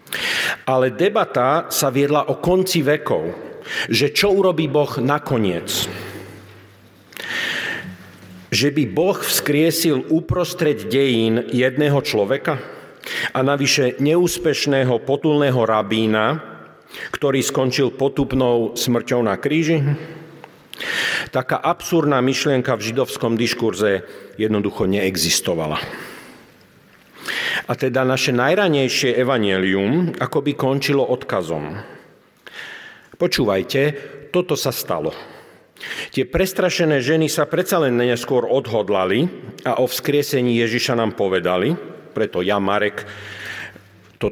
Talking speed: 95 wpm